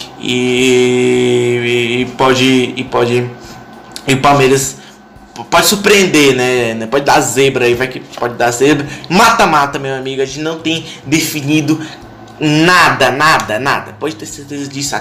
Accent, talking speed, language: Brazilian, 150 wpm, Portuguese